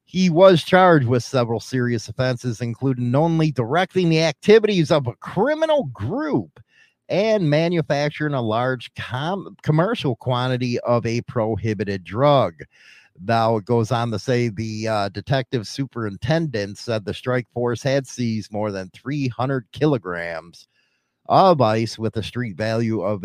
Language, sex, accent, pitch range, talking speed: English, male, American, 105-135 Hz, 135 wpm